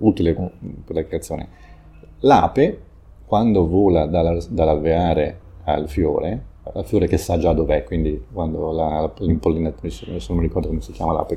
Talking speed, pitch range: 135 wpm, 80-95 Hz